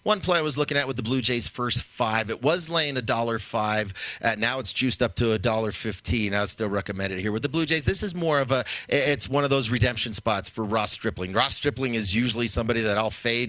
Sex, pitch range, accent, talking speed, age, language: male, 105-125 Hz, American, 245 wpm, 30-49, English